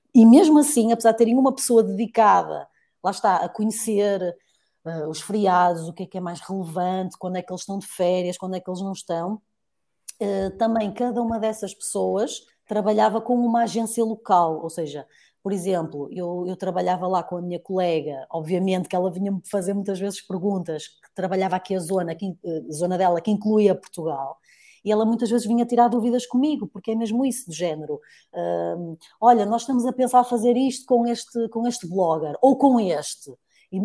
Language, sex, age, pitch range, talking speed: Portuguese, female, 20-39, 180-235 Hz, 190 wpm